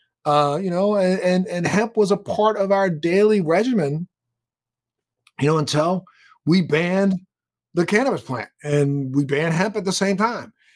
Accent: American